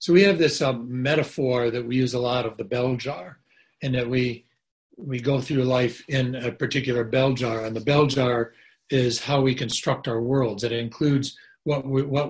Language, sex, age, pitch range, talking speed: English, male, 60-79, 125-150 Hz, 205 wpm